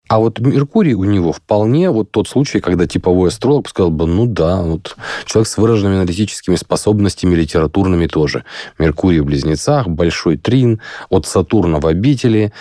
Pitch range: 85-110 Hz